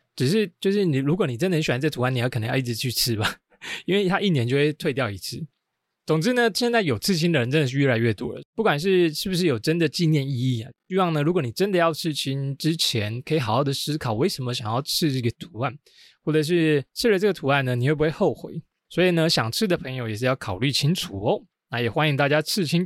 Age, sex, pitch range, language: 20-39, male, 125-175 Hz, Chinese